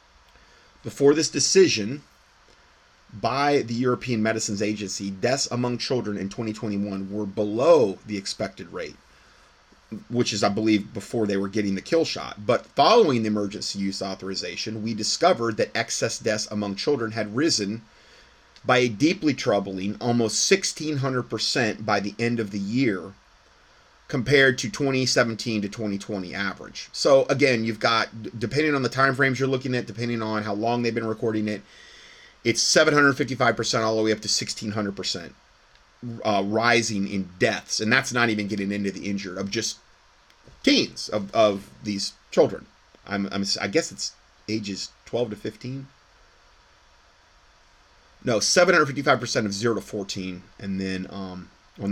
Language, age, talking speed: English, 30-49, 145 wpm